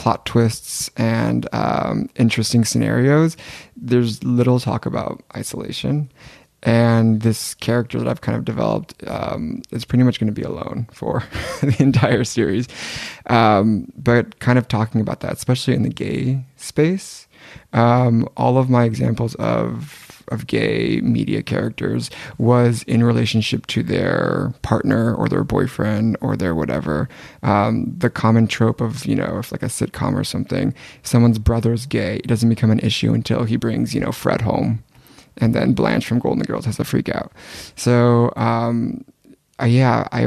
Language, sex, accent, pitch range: English, male, American, 115-130 Hz